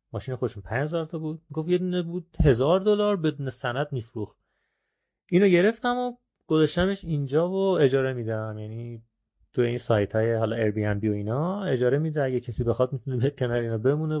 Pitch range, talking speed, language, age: 115-155 Hz, 165 wpm, Persian, 30-49